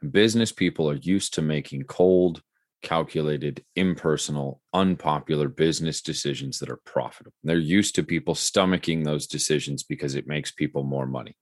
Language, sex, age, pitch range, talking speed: English, male, 30-49, 75-90 Hz, 145 wpm